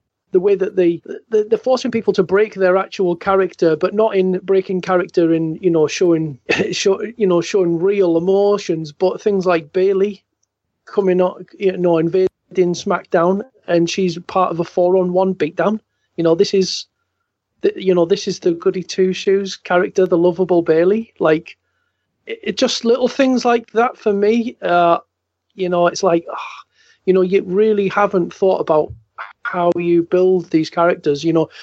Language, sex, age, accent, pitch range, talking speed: English, male, 30-49, British, 170-200 Hz, 175 wpm